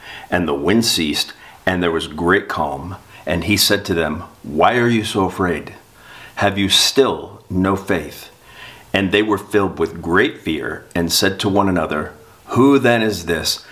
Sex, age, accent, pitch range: male, 50-69, American, 85-100 Hz